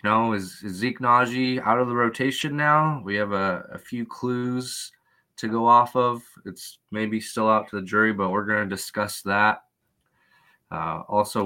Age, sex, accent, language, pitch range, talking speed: 20-39, male, American, English, 95-115 Hz, 185 wpm